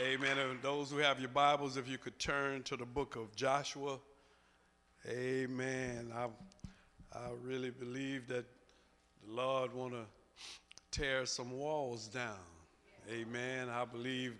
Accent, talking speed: American, 140 wpm